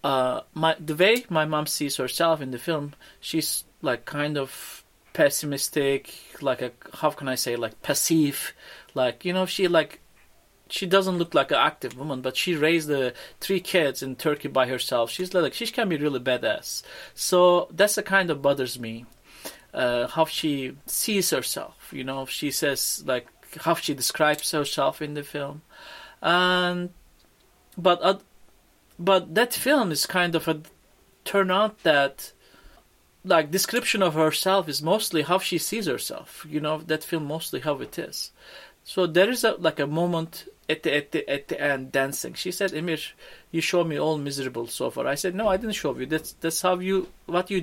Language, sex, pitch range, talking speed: English, male, 140-180 Hz, 185 wpm